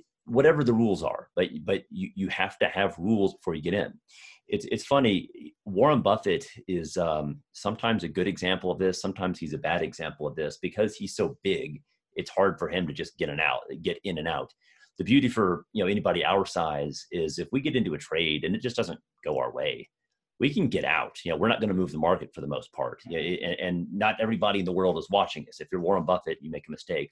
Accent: American